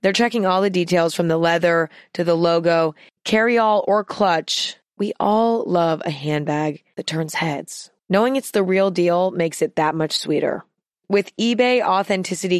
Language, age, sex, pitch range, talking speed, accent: English, 20-39, female, 170-210 Hz, 165 wpm, American